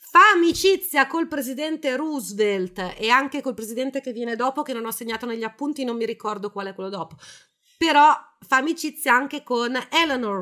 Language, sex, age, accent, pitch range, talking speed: Italian, female, 30-49, native, 185-250 Hz, 180 wpm